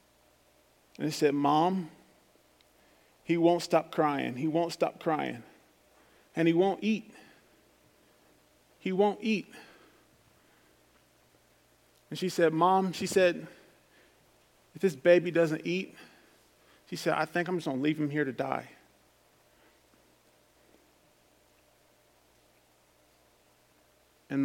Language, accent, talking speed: English, American, 110 wpm